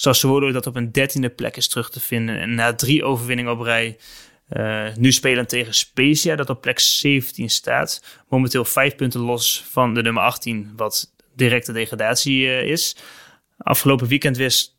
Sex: male